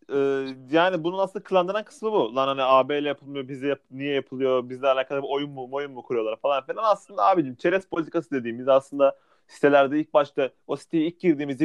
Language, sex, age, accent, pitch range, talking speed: Turkish, male, 30-49, native, 140-180 Hz, 185 wpm